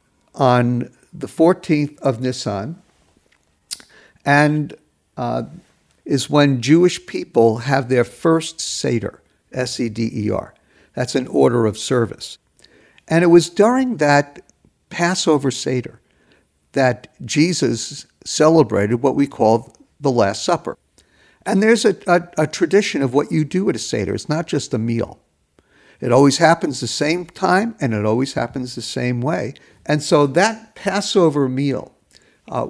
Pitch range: 120-165 Hz